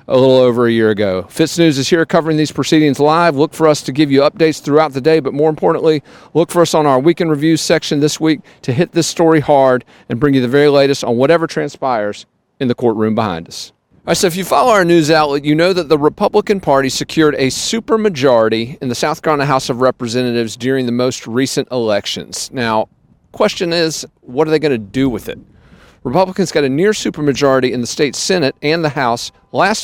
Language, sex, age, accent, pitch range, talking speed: English, male, 40-59, American, 125-160 Hz, 215 wpm